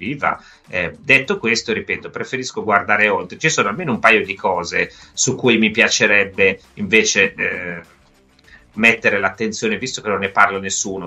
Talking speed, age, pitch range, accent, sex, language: 140 wpm, 30-49, 90-125 Hz, native, male, Italian